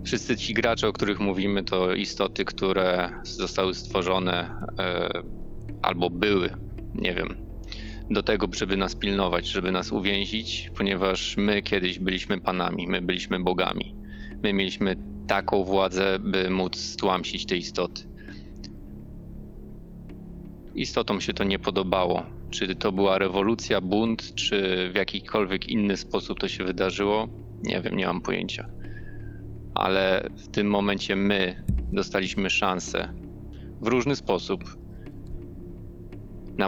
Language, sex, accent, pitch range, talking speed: Polish, male, native, 95-110 Hz, 120 wpm